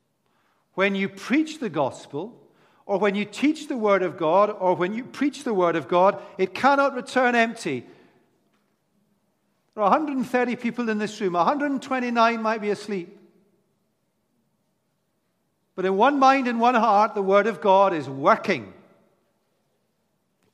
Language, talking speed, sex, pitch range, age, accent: English, 145 wpm, male, 175-235 Hz, 50-69, British